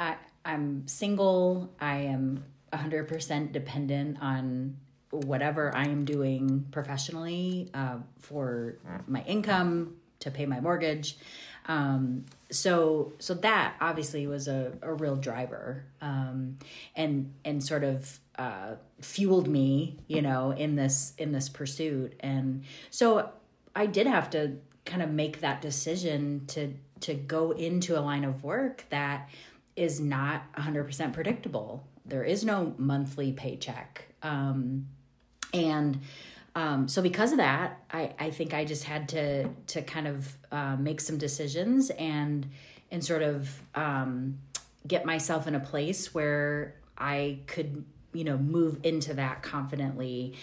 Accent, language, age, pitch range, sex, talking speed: American, English, 30-49, 135-160 Hz, female, 140 wpm